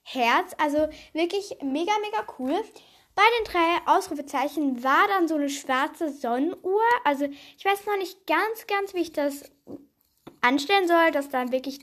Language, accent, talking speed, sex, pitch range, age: German, German, 155 wpm, female, 275-350 Hz, 10-29